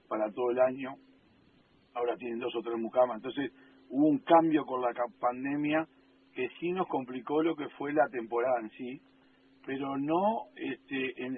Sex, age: male, 50-69